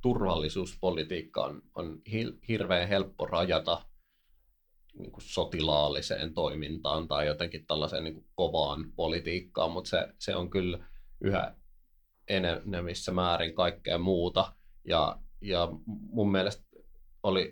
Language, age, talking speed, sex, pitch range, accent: Finnish, 30-49, 105 wpm, male, 85-95 Hz, native